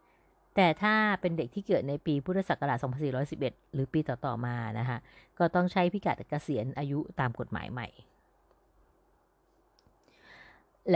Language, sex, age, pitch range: Thai, female, 30-49, 130-175 Hz